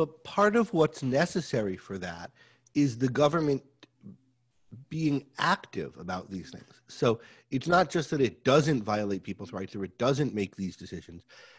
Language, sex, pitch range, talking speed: English, male, 110-150 Hz, 160 wpm